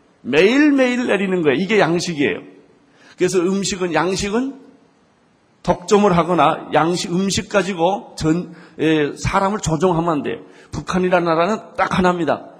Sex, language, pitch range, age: male, Korean, 150-200 Hz, 40-59